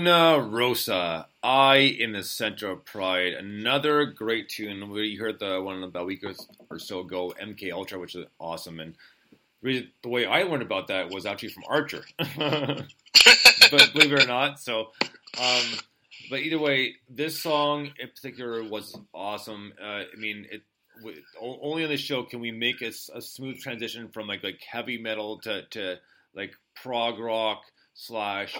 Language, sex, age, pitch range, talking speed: English, male, 30-49, 105-135 Hz, 170 wpm